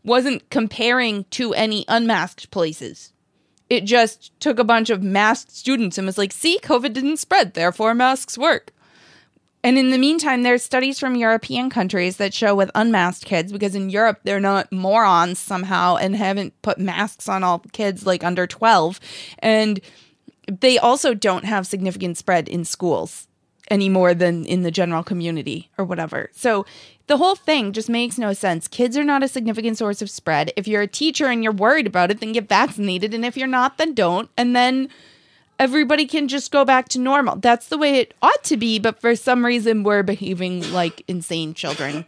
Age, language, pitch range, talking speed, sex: 20-39, English, 180-245 Hz, 190 wpm, female